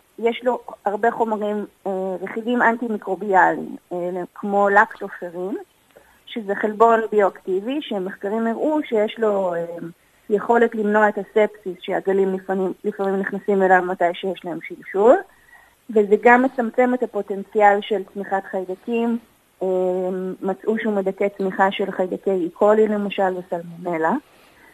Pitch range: 190-220 Hz